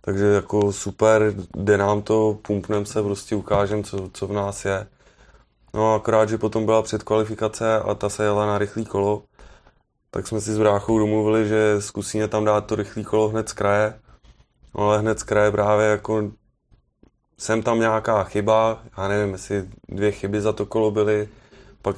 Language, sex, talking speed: Czech, male, 175 wpm